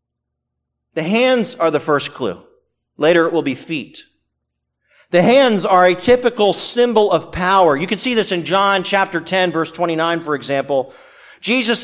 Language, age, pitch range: English, 50-69, 165-235 Hz